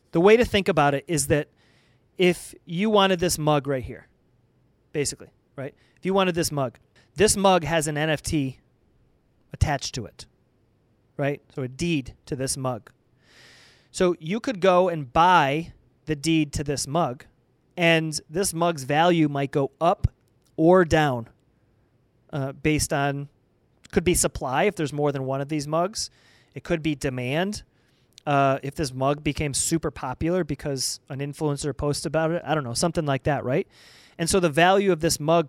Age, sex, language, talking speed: 30-49, male, English, 170 wpm